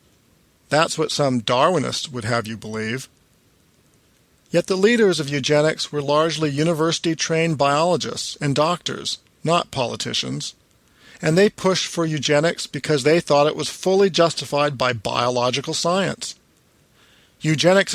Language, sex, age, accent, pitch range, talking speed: English, male, 50-69, American, 130-165 Hz, 125 wpm